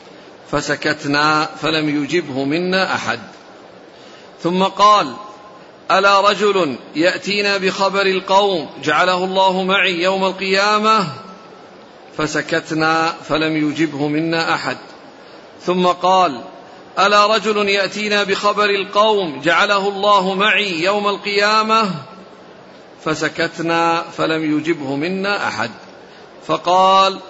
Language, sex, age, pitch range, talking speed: Arabic, male, 50-69, 160-200 Hz, 90 wpm